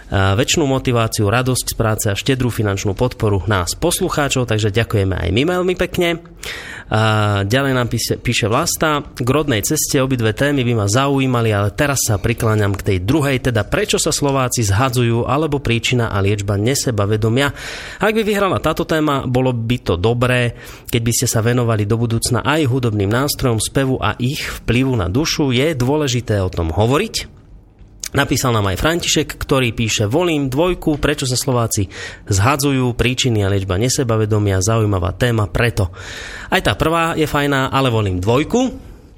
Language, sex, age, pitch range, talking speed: Slovak, male, 30-49, 110-140 Hz, 160 wpm